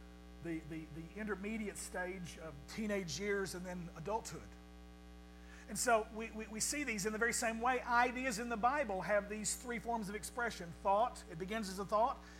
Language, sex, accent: English, male, American